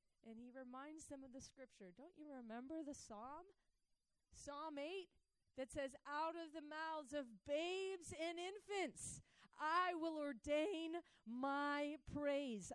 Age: 30-49